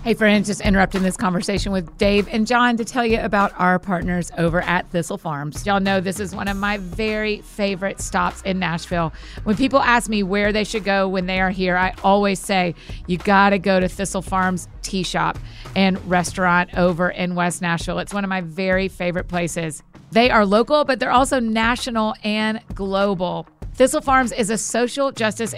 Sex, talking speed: female, 195 wpm